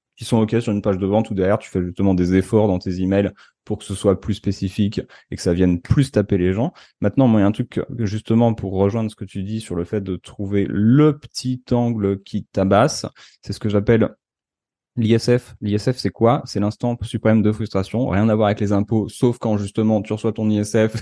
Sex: male